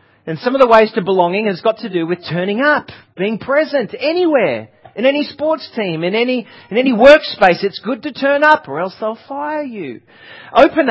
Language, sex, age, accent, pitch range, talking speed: English, male, 40-59, Australian, 170-225 Hz, 205 wpm